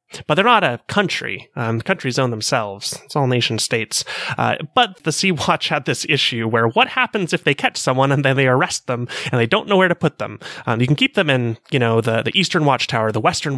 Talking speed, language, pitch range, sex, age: 245 wpm, English, 120-155 Hz, male, 30-49